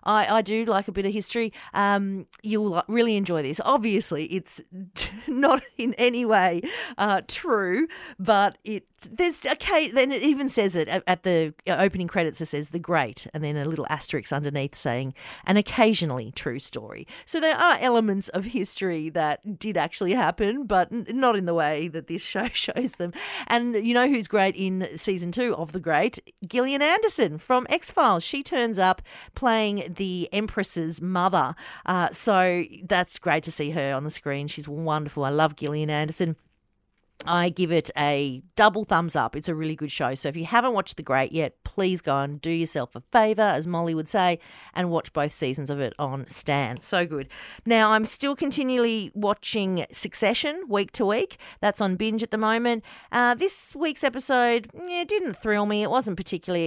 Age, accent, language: 40-59, Australian, English